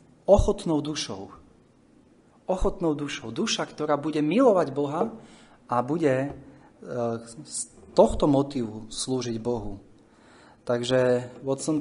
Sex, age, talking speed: male, 30-49, 90 wpm